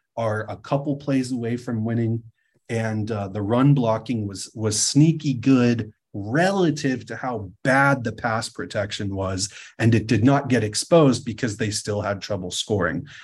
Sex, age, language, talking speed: male, 30-49, English, 165 wpm